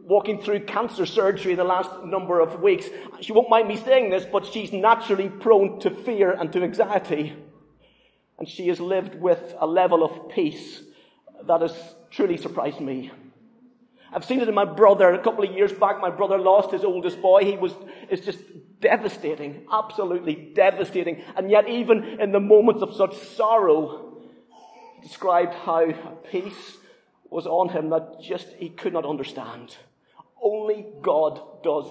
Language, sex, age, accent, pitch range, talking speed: English, male, 40-59, British, 180-225 Hz, 165 wpm